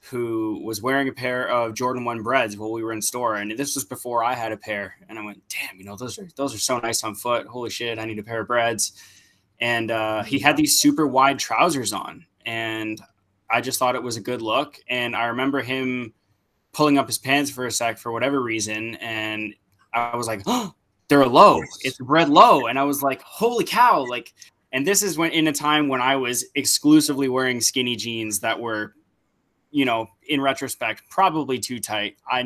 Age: 20-39